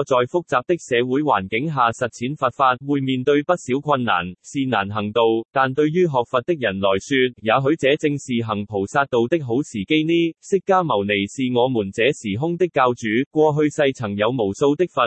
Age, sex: 20-39, male